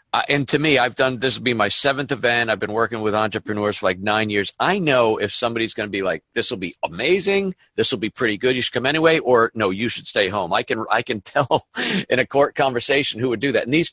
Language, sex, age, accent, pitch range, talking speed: English, male, 50-69, American, 105-130 Hz, 270 wpm